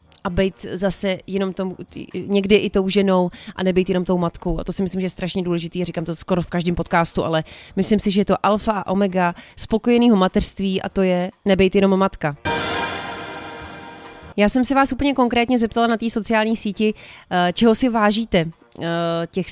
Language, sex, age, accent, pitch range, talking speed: Czech, female, 30-49, native, 180-225 Hz, 185 wpm